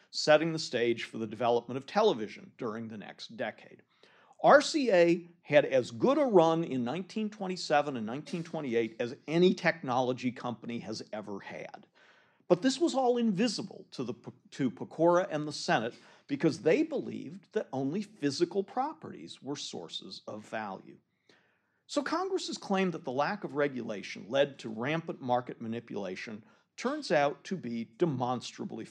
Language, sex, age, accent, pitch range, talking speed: English, male, 50-69, American, 140-210 Hz, 145 wpm